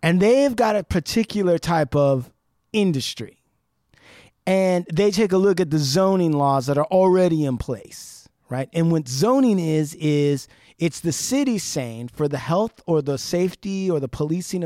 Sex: male